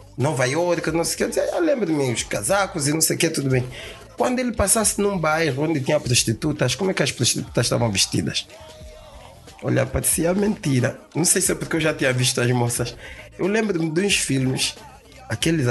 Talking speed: 200 wpm